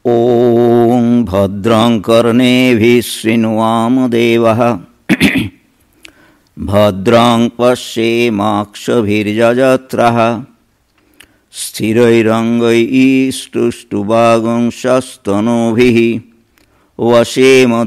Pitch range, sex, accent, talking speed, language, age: 105-120 Hz, male, Indian, 45 wpm, English, 60-79